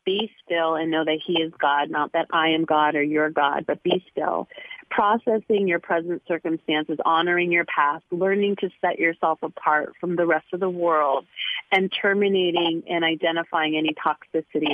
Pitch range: 155-190 Hz